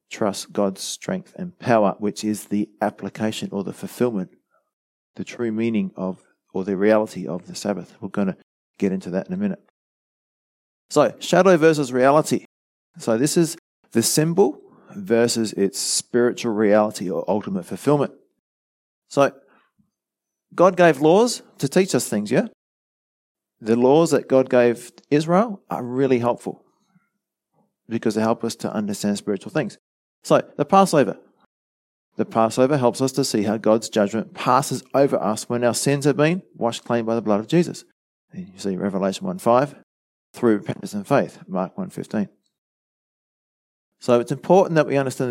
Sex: male